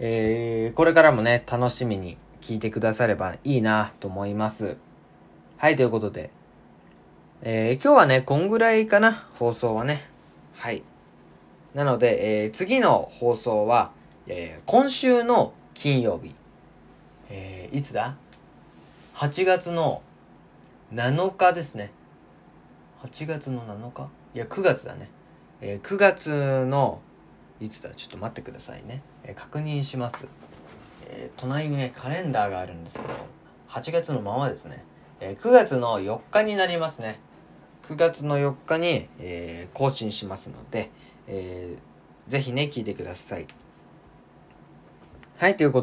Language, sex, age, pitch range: Japanese, male, 20-39, 100-145 Hz